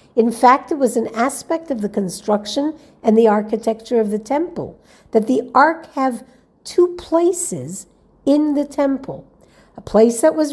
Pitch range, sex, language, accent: 215-275 Hz, female, English, American